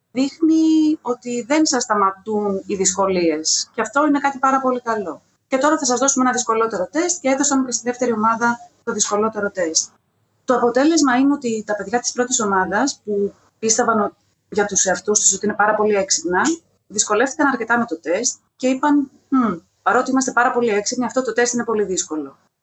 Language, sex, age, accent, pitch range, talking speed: Greek, female, 30-49, native, 210-275 Hz, 185 wpm